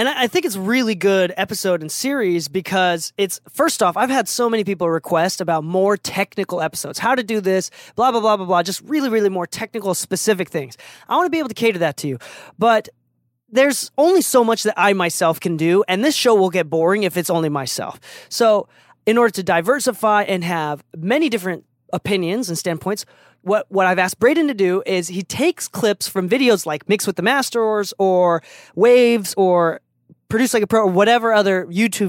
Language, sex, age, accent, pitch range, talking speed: English, male, 20-39, American, 175-225 Hz, 210 wpm